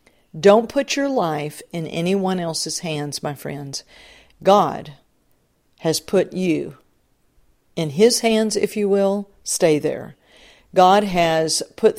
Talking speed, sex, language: 125 wpm, female, English